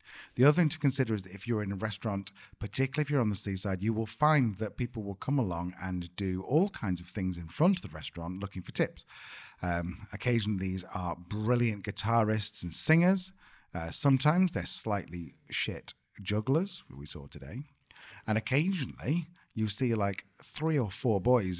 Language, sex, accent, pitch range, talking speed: English, male, British, 90-125 Hz, 185 wpm